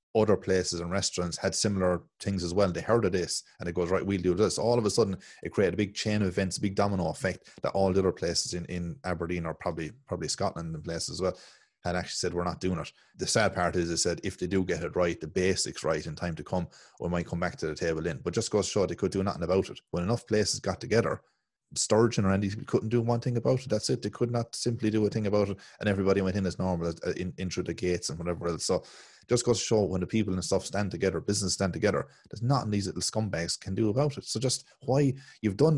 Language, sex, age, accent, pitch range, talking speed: English, male, 30-49, Irish, 90-110 Hz, 280 wpm